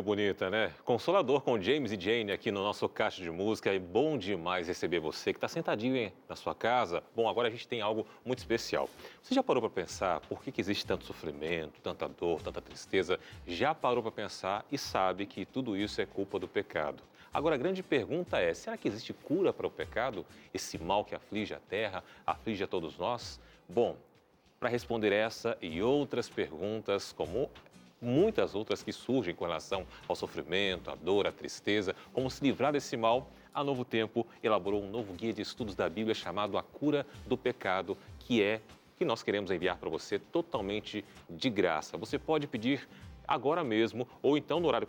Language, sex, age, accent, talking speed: Portuguese, male, 40-59, Brazilian, 190 wpm